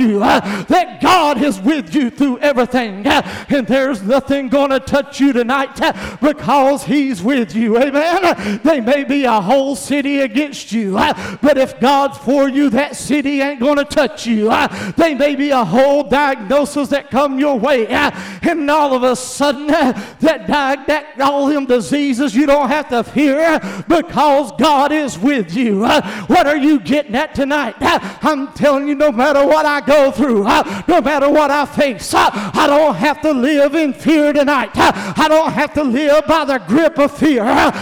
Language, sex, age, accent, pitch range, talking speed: English, male, 50-69, American, 270-305 Hz, 185 wpm